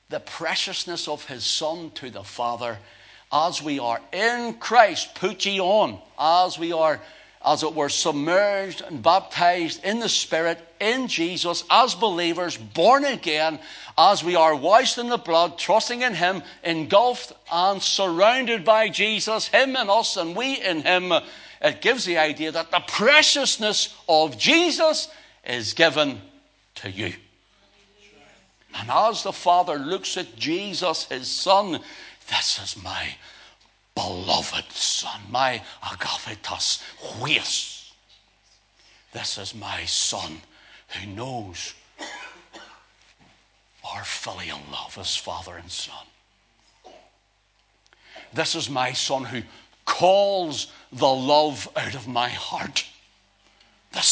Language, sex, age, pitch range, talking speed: English, male, 60-79, 130-215 Hz, 125 wpm